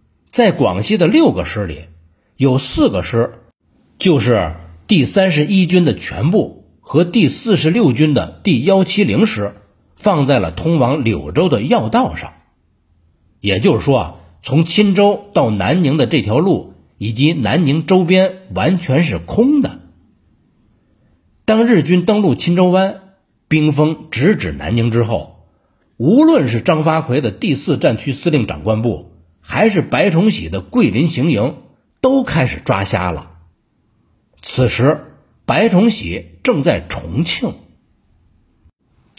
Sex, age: male, 50-69